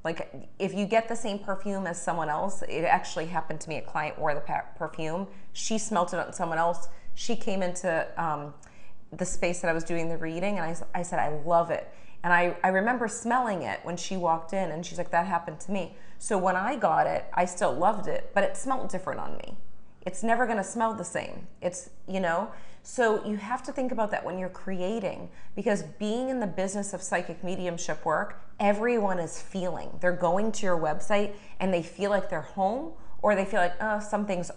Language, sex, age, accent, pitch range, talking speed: English, female, 30-49, American, 170-205 Hz, 215 wpm